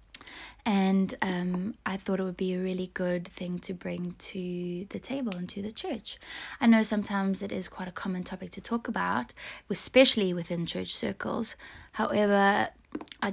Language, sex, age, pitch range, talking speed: English, female, 20-39, 180-215 Hz, 170 wpm